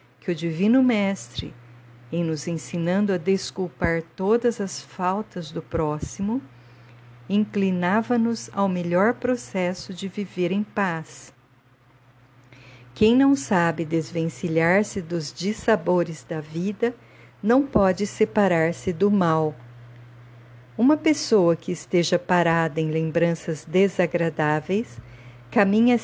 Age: 50-69